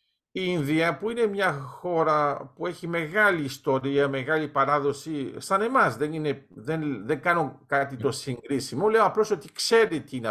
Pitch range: 140-195 Hz